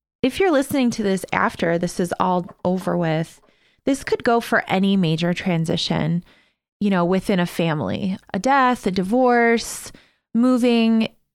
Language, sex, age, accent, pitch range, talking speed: English, female, 20-39, American, 170-215 Hz, 150 wpm